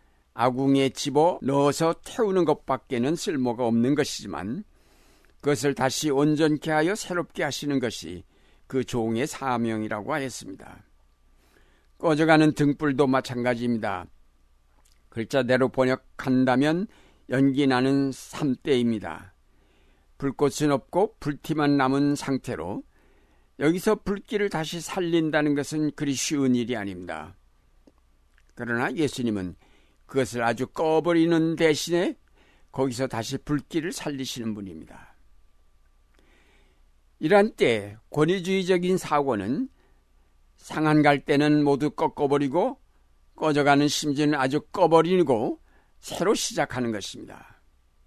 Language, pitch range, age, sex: Korean, 105-155 Hz, 60-79, male